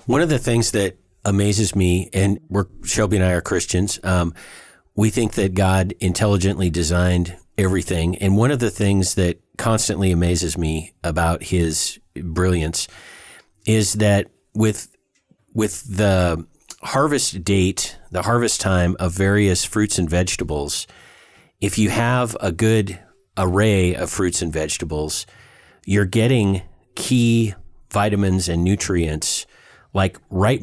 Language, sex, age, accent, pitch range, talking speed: English, male, 40-59, American, 90-110 Hz, 130 wpm